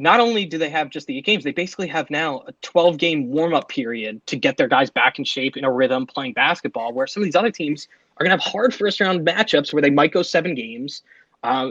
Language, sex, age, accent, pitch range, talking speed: English, male, 20-39, American, 150-215 Hz, 250 wpm